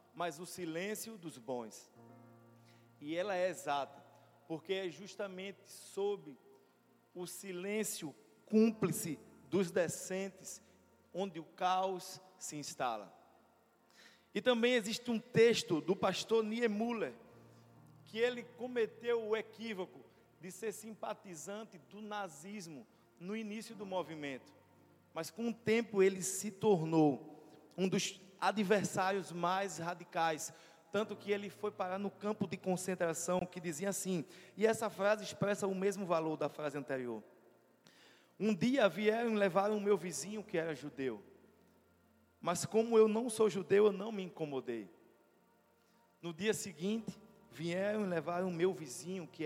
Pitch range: 160-210 Hz